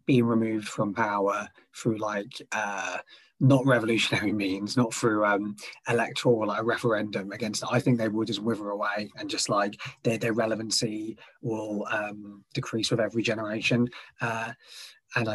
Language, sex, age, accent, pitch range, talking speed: English, male, 20-39, British, 105-125 Hz, 155 wpm